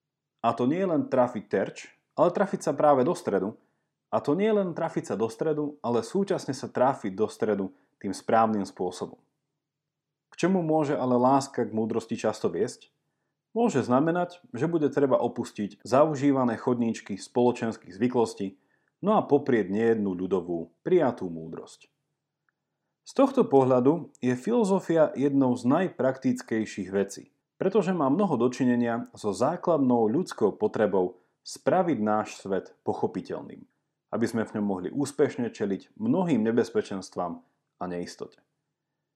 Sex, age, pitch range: male, 40-59, 110-150 Hz